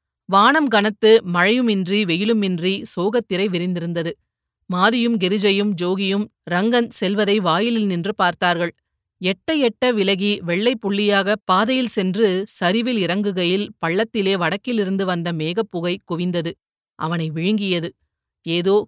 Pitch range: 180-220 Hz